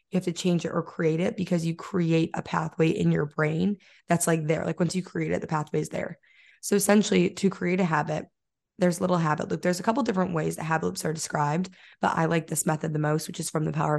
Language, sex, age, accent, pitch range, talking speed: English, female, 20-39, American, 160-190 Hz, 265 wpm